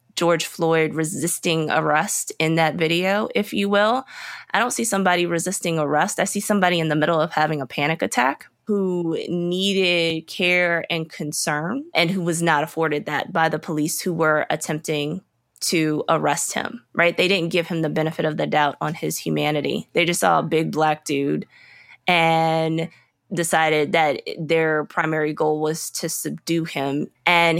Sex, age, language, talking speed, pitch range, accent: female, 20-39, English, 170 wpm, 155-180 Hz, American